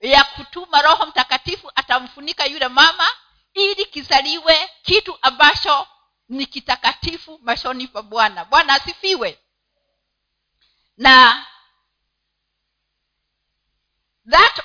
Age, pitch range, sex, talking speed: 50-69, 265-340 Hz, female, 80 wpm